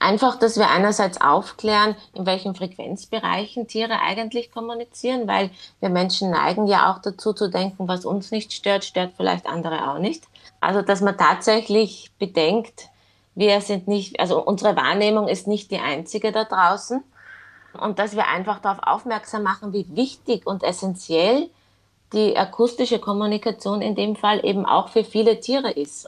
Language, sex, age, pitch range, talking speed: German, female, 20-39, 180-210 Hz, 160 wpm